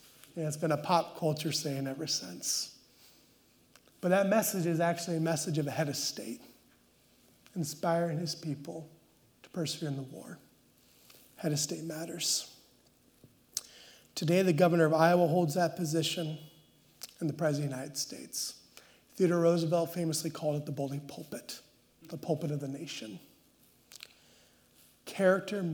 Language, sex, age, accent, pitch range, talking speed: English, male, 30-49, American, 150-175 Hz, 145 wpm